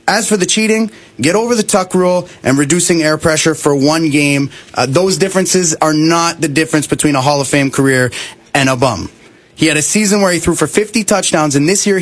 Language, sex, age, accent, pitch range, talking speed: English, male, 30-49, American, 135-190 Hz, 225 wpm